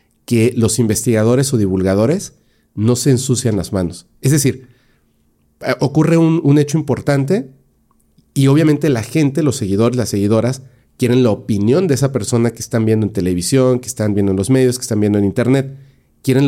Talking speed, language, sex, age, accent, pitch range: 175 wpm, Spanish, male, 40-59, Mexican, 110-145 Hz